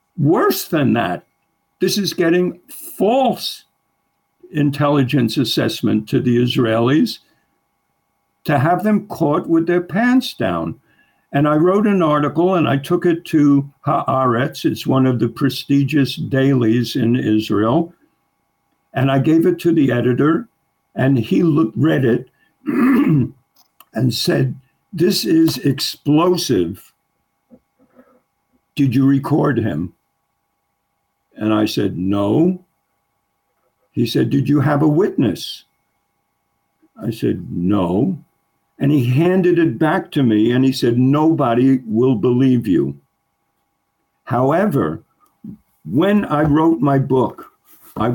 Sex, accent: male, American